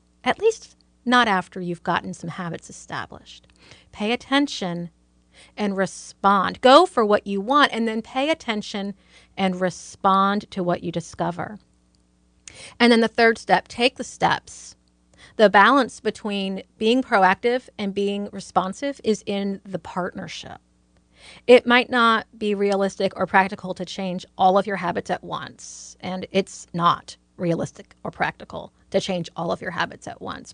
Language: English